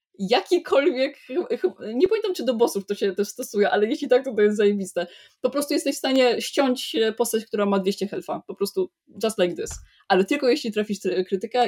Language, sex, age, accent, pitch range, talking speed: Polish, female, 20-39, native, 195-235 Hz, 190 wpm